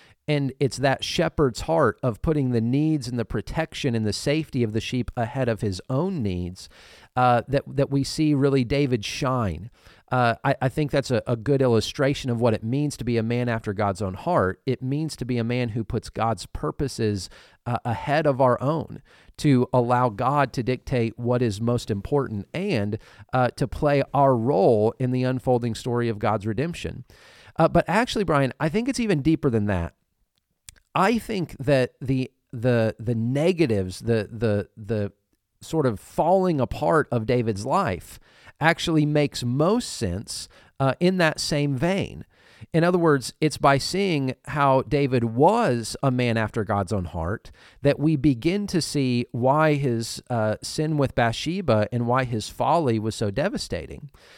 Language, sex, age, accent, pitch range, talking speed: English, male, 40-59, American, 115-145 Hz, 175 wpm